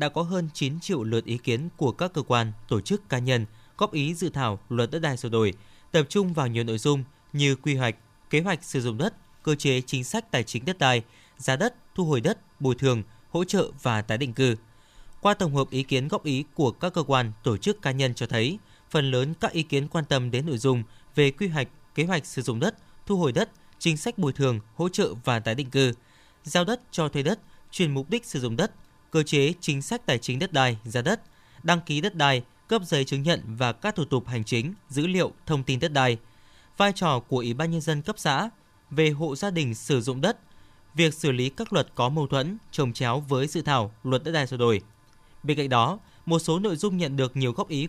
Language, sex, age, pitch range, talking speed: Vietnamese, male, 20-39, 125-165 Hz, 245 wpm